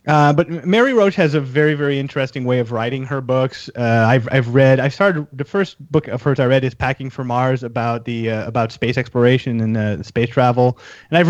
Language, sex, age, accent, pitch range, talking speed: English, male, 30-49, American, 130-160 Hz, 230 wpm